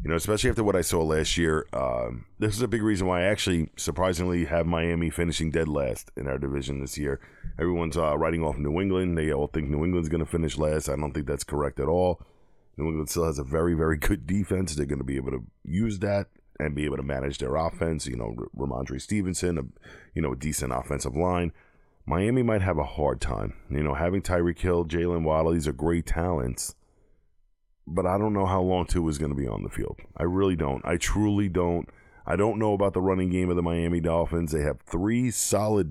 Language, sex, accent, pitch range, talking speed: English, male, American, 75-90 Hz, 230 wpm